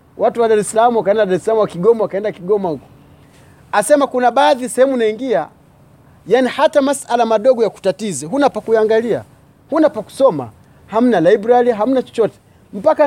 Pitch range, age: 175-240 Hz, 30-49